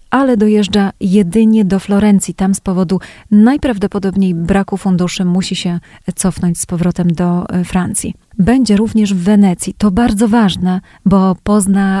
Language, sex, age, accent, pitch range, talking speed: Polish, female, 30-49, native, 185-220 Hz, 135 wpm